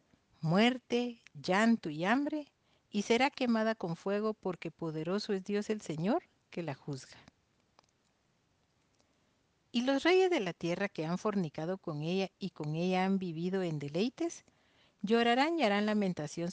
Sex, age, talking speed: female, 50-69, 145 wpm